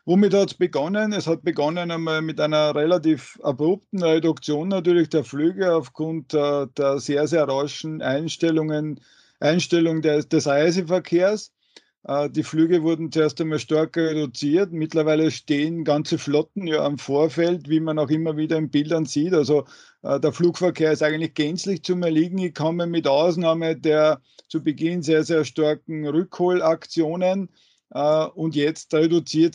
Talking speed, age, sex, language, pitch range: 145 wpm, 50-69, male, German, 145-165 Hz